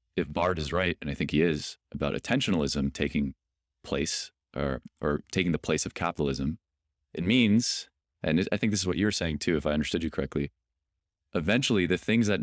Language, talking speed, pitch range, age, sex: English, 195 wpm, 75-90 Hz, 30-49, male